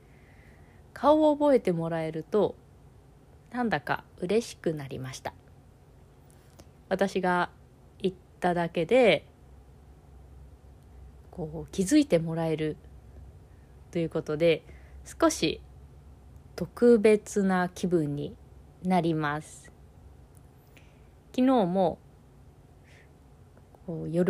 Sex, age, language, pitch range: female, 20-39, Japanese, 140-195 Hz